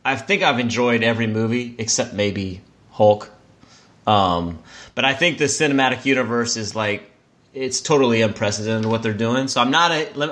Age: 30-49